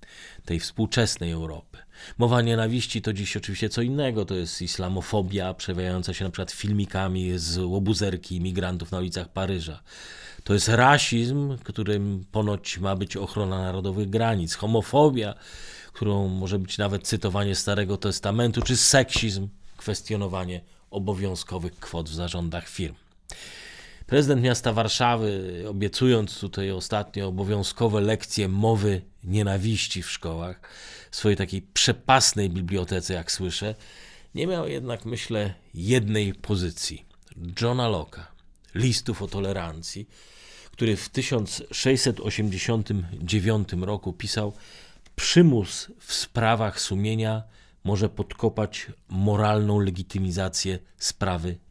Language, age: Polish, 40-59